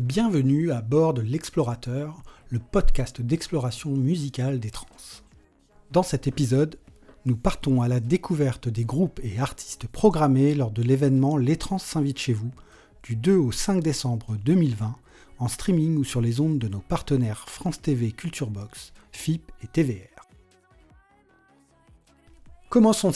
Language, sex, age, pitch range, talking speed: French, male, 40-59, 120-160 Hz, 140 wpm